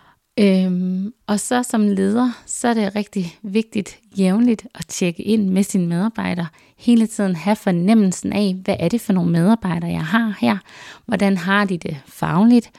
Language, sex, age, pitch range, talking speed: Danish, female, 30-49, 170-210 Hz, 165 wpm